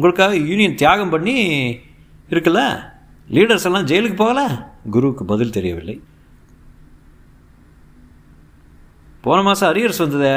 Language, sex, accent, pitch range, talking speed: Tamil, male, native, 95-155 Hz, 95 wpm